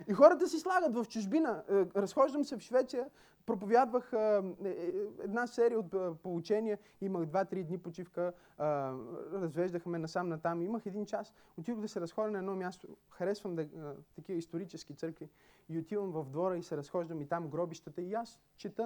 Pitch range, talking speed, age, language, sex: 160-220 Hz, 160 wpm, 30-49, Bulgarian, male